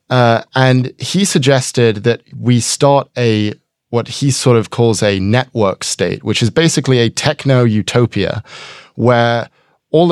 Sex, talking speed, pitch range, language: male, 140 wpm, 110-135 Hz, English